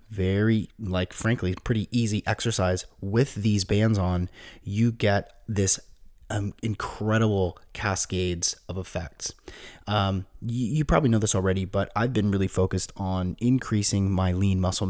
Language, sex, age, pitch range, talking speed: English, male, 30-49, 90-105 Hz, 140 wpm